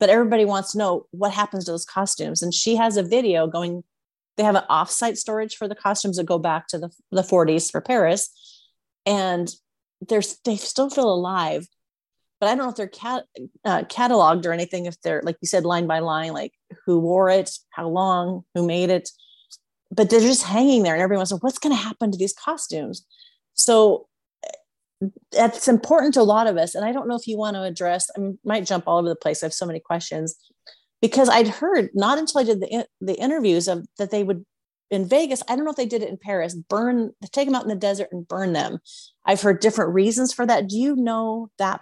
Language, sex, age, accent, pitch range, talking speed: English, female, 30-49, American, 180-230 Hz, 220 wpm